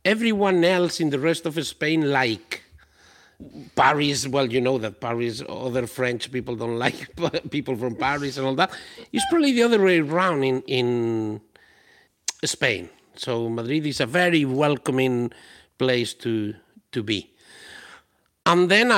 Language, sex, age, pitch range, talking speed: English, male, 60-79, 125-175 Hz, 145 wpm